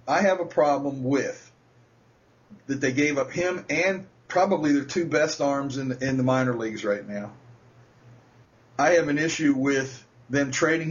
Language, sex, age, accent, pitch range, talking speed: English, male, 40-59, American, 125-195 Hz, 165 wpm